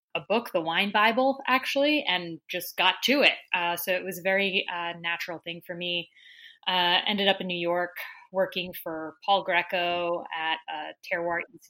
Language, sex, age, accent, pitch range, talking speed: English, female, 20-39, American, 175-210 Hz, 185 wpm